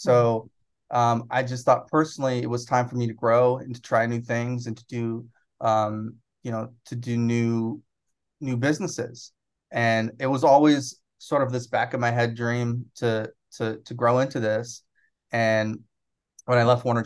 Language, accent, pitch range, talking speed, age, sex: English, American, 110-125 Hz, 185 wpm, 20-39, male